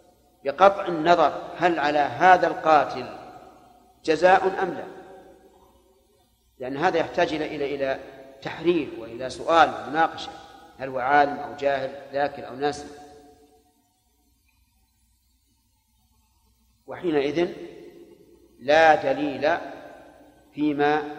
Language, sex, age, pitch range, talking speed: Arabic, male, 40-59, 140-170 Hz, 85 wpm